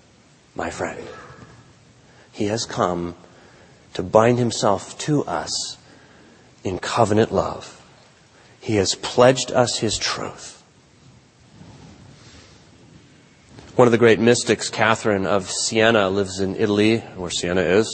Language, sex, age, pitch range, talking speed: English, male, 30-49, 115-165 Hz, 110 wpm